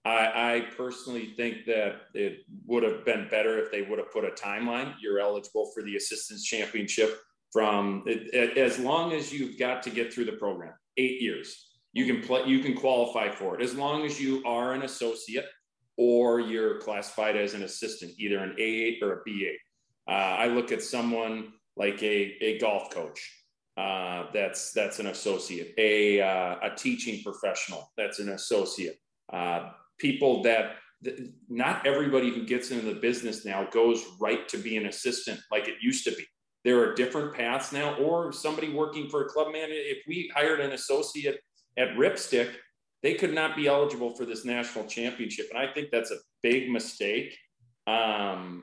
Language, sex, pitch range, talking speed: English, male, 110-145 Hz, 175 wpm